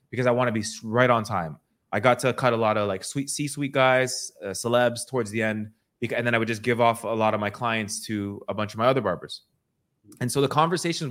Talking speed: 255 wpm